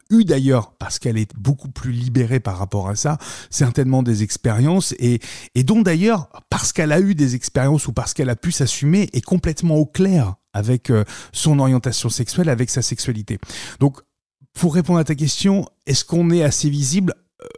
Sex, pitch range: male, 120-165 Hz